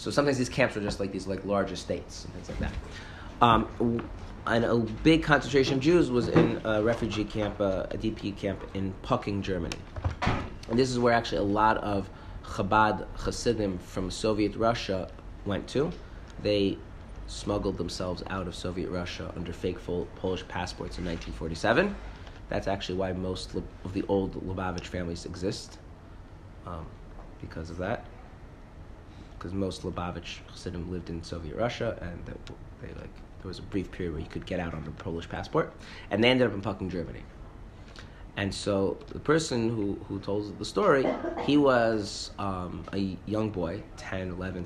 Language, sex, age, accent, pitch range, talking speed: English, male, 30-49, American, 90-105 Hz, 170 wpm